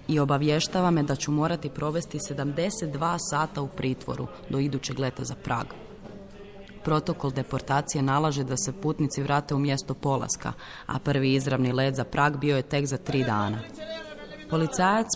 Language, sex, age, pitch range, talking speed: Croatian, female, 20-39, 125-150 Hz, 155 wpm